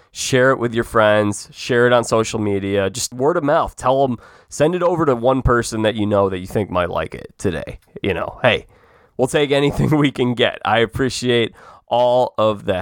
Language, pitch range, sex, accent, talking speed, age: English, 100-125 Hz, male, American, 215 wpm, 20-39